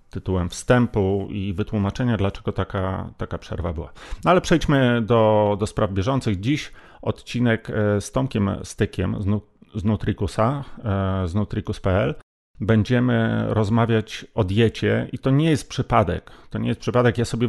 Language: Polish